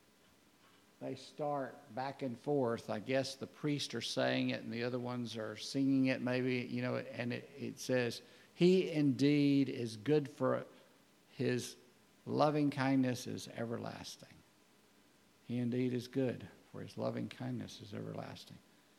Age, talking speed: 50-69, 150 wpm